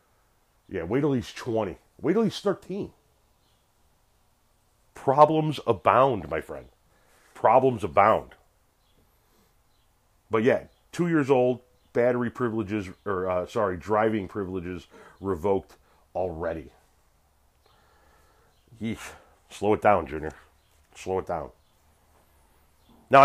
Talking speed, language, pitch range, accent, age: 100 wpm, English, 90-120 Hz, American, 40-59